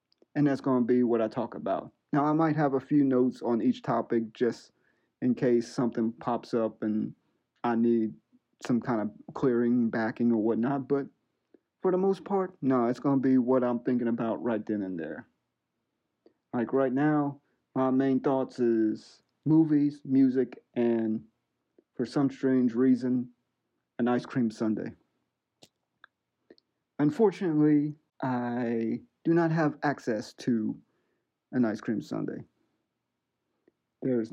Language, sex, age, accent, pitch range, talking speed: English, male, 40-59, American, 115-145 Hz, 145 wpm